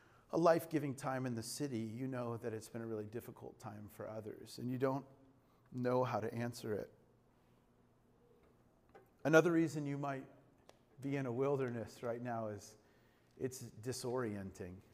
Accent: American